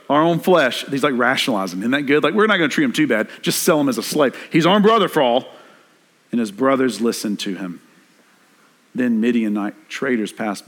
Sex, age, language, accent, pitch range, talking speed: male, 50-69, English, American, 105-125 Hz, 220 wpm